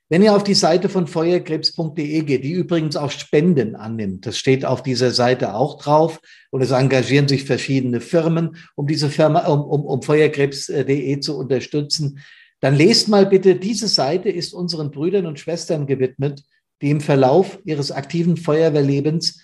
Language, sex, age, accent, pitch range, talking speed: German, male, 50-69, German, 140-175 Hz, 165 wpm